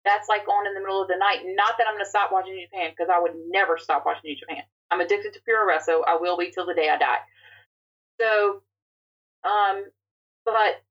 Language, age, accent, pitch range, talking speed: English, 30-49, American, 175-215 Hz, 235 wpm